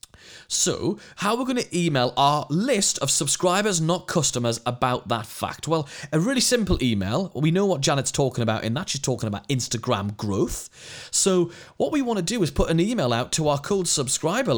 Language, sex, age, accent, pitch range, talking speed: English, male, 30-49, British, 120-185 Hz, 200 wpm